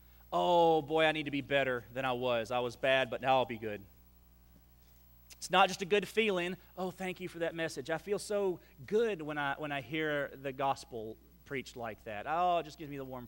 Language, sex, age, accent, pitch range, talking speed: English, male, 30-49, American, 130-200 Hz, 230 wpm